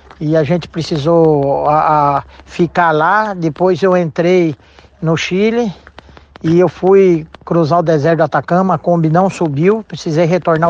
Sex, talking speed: male, 140 wpm